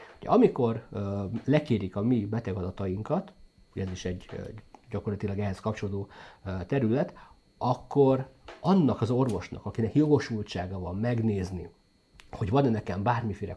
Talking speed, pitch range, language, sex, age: 110 wpm, 100-120 Hz, English, male, 50-69